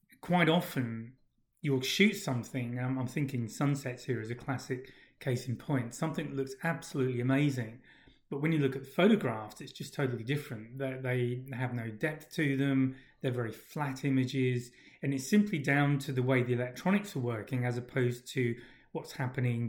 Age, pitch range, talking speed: 30-49, 125-145 Hz, 170 wpm